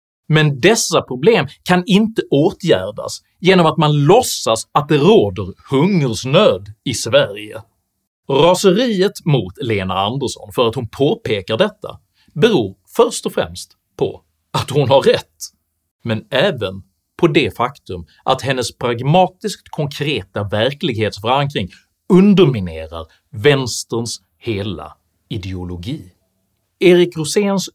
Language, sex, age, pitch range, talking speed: Swedish, male, 30-49, 95-160 Hz, 110 wpm